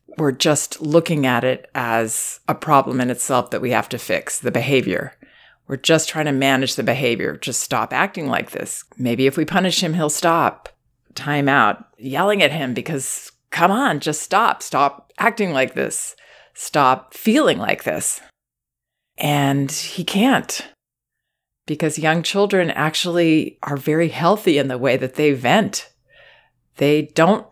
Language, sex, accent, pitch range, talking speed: English, female, American, 130-160 Hz, 155 wpm